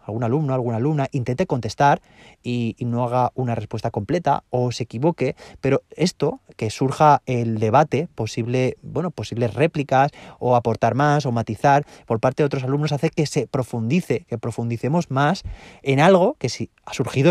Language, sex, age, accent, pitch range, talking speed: Spanish, male, 30-49, Spanish, 115-140 Hz, 165 wpm